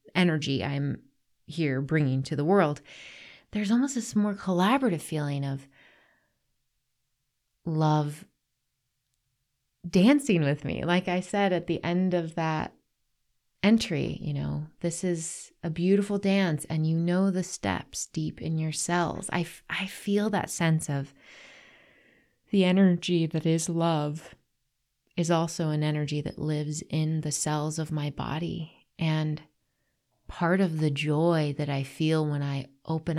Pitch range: 140-170 Hz